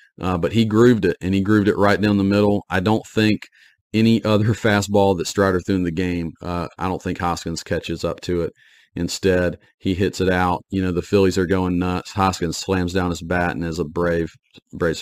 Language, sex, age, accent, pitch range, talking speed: English, male, 40-59, American, 90-100 Hz, 225 wpm